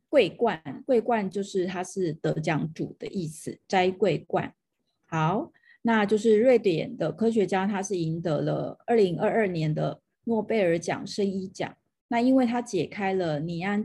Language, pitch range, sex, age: Chinese, 170-220 Hz, female, 30-49